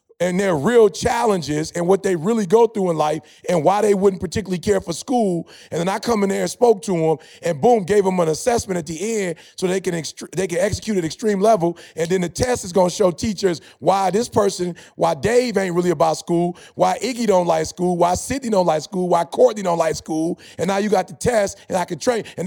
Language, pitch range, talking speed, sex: English, 170-210 Hz, 250 wpm, male